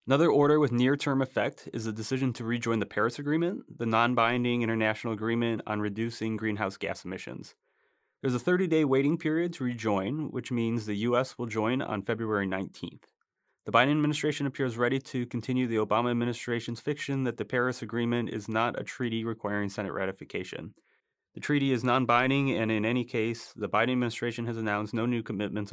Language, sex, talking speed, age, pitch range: English, male, 175 wpm, 30-49, 110-130 Hz